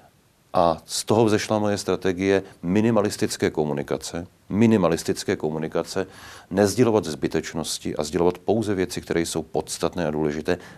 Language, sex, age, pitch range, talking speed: Czech, male, 40-59, 85-95 Hz, 115 wpm